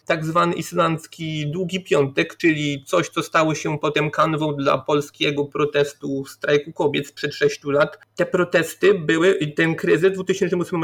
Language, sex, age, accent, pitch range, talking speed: Polish, male, 30-49, native, 150-190 Hz, 155 wpm